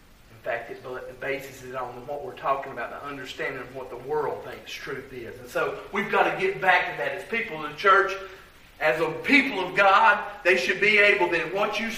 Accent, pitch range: American, 145-225 Hz